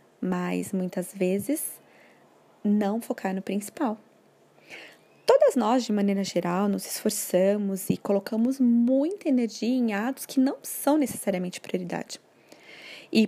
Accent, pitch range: Brazilian, 190-245 Hz